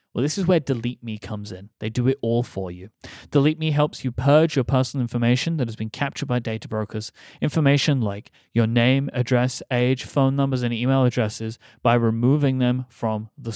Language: English